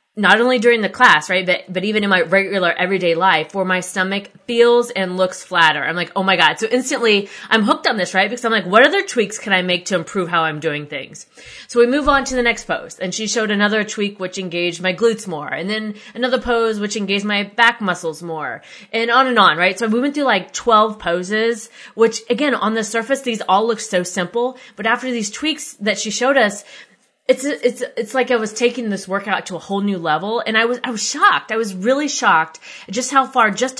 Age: 20-39